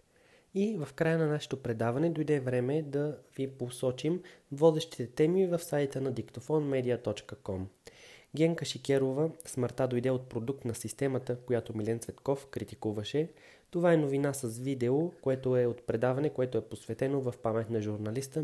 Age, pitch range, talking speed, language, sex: 20-39, 120-155 Hz, 145 wpm, Bulgarian, male